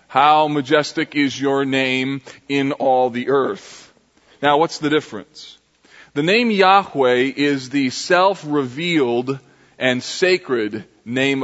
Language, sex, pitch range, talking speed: English, male, 130-160 Hz, 115 wpm